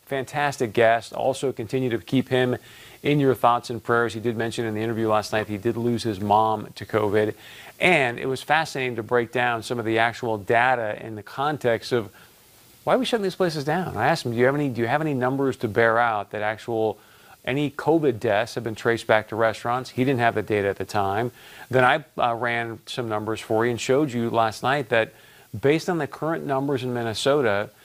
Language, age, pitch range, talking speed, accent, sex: English, 40-59, 115-145 Hz, 220 wpm, American, male